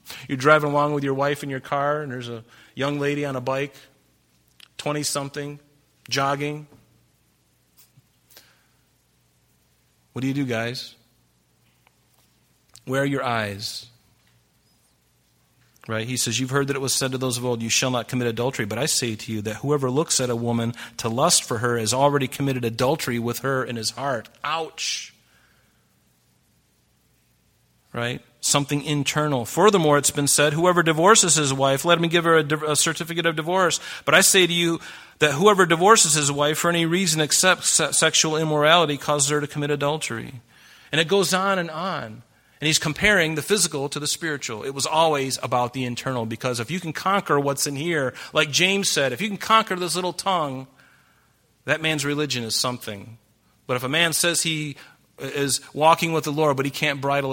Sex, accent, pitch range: male, American, 120-155 Hz